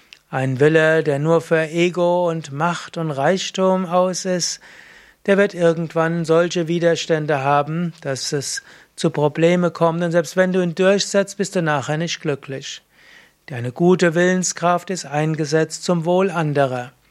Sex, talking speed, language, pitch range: male, 145 wpm, German, 150-180 Hz